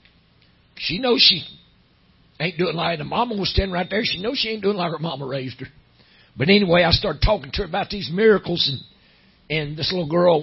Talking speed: 215 wpm